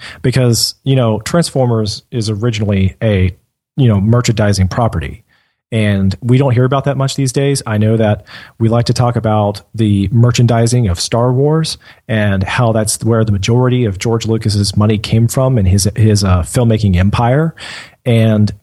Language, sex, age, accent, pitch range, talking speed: English, male, 40-59, American, 105-125 Hz, 170 wpm